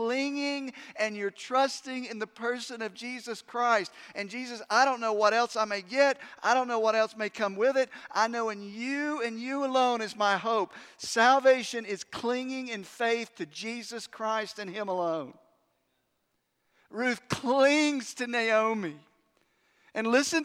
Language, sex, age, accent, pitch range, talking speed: English, male, 50-69, American, 200-255 Hz, 165 wpm